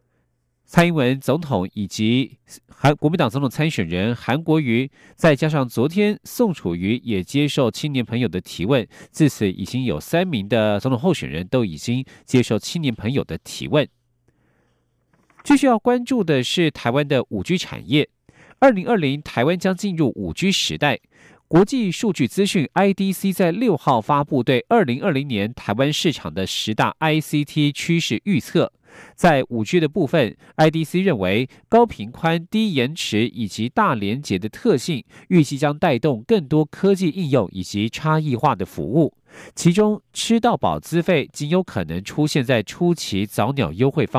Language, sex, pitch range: German, male, 115-175 Hz